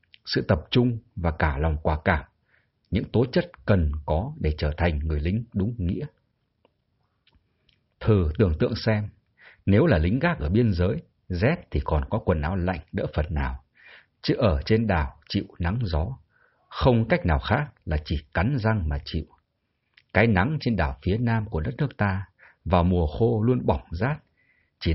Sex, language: male, Vietnamese